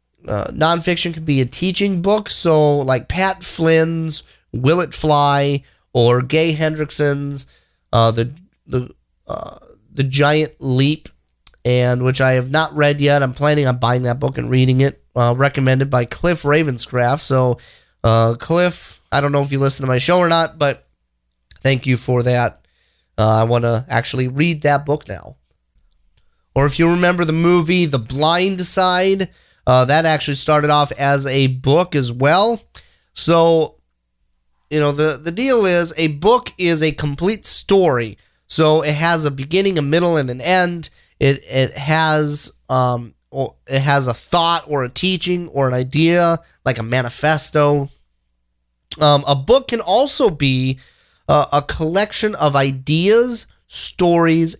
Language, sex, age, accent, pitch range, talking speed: English, male, 30-49, American, 130-165 Hz, 160 wpm